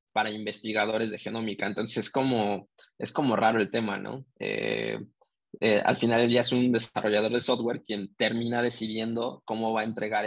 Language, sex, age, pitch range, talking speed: Spanish, male, 20-39, 110-125 Hz, 180 wpm